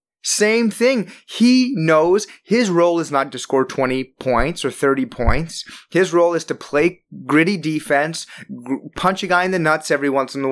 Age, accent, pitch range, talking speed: 30-49, American, 155-220 Hz, 185 wpm